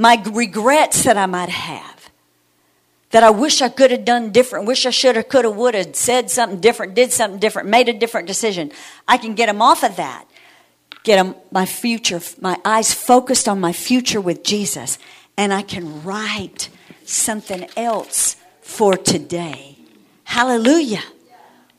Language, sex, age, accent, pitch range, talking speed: English, female, 50-69, American, 220-365 Hz, 160 wpm